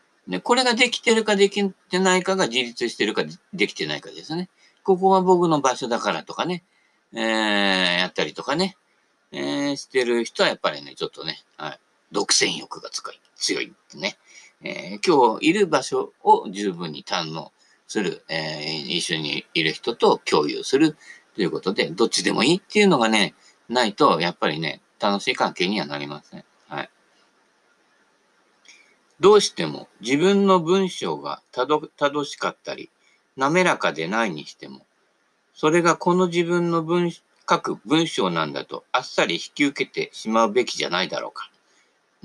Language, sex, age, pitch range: Japanese, male, 50-69, 115-190 Hz